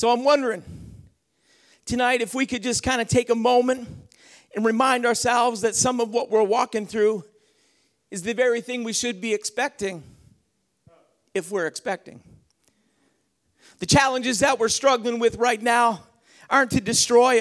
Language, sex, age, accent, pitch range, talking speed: English, male, 50-69, American, 235-275 Hz, 155 wpm